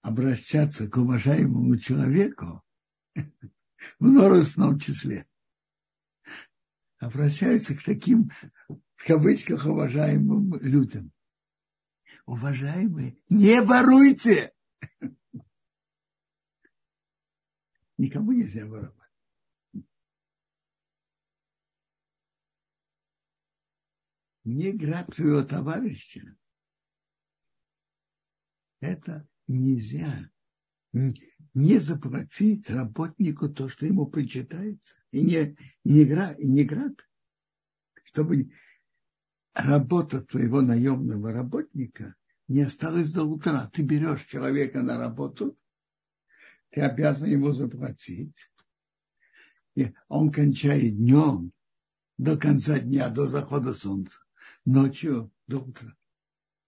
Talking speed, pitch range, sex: 70 wpm, 130-160 Hz, male